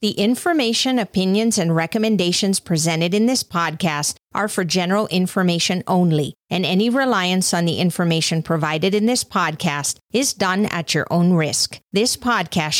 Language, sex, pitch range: English, female, 165-220 Hz